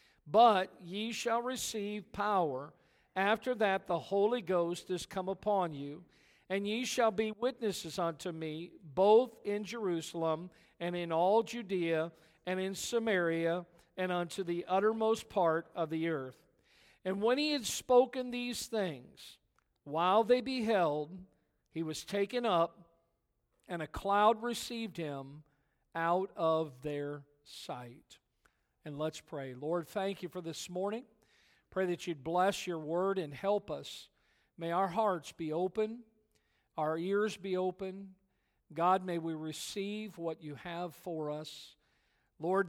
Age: 50-69